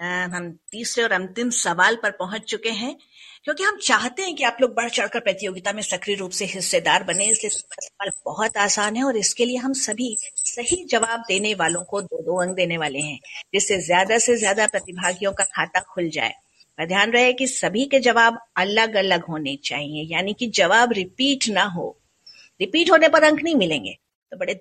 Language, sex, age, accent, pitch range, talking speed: Hindi, female, 50-69, native, 185-270 Hz, 195 wpm